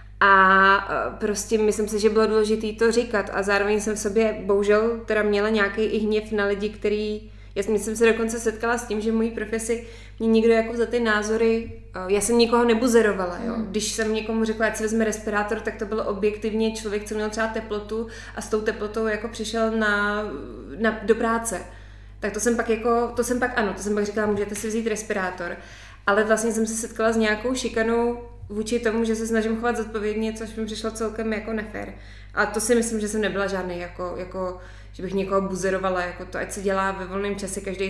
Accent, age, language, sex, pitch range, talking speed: native, 20-39, Czech, female, 190-220 Hz, 210 wpm